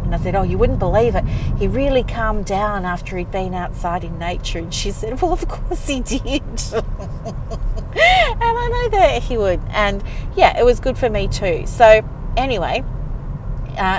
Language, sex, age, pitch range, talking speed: English, female, 40-59, 170-220 Hz, 180 wpm